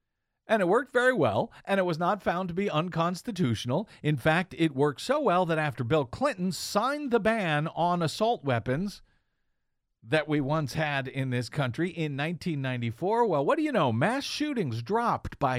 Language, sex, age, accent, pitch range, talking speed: English, male, 50-69, American, 125-195 Hz, 180 wpm